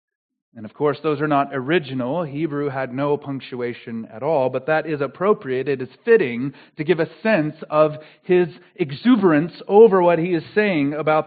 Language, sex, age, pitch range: English, male, 40-59, 145-205 Hz